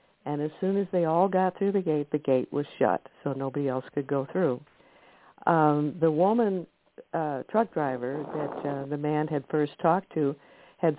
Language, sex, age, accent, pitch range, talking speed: English, female, 60-79, American, 140-165 Hz, 190 wpm